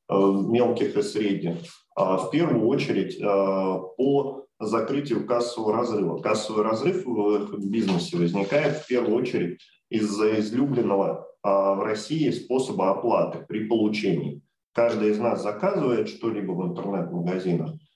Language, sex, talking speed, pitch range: Russian, male, 110 wpm, 100-130 Hz